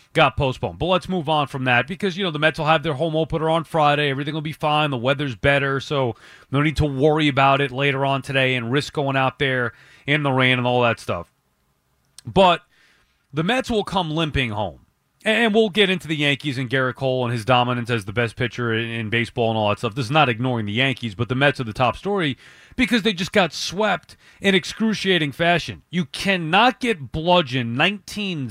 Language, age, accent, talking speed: English, 30-49, American, 215 wpm